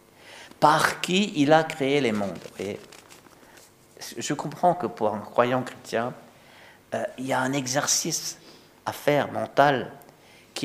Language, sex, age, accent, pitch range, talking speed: French, male, 50-69, French, 100-120 Hz, 140 wpm